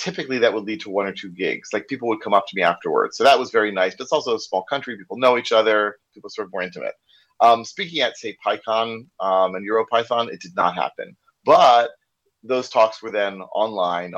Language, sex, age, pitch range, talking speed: English, male, 30-49, 105-150 Hz, 235 wpm